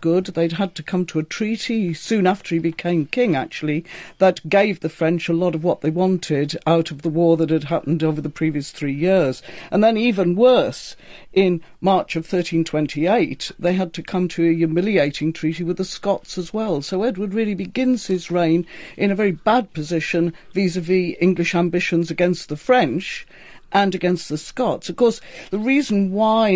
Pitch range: 160-190 Hz